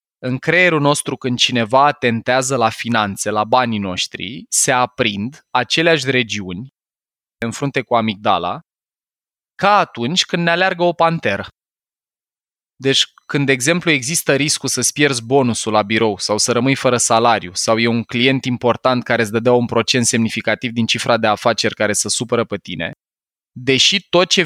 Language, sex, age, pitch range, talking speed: Romanian, male, 20-39, 115-145 Hz, 160 wpm